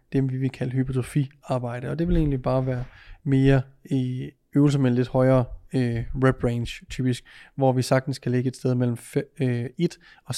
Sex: male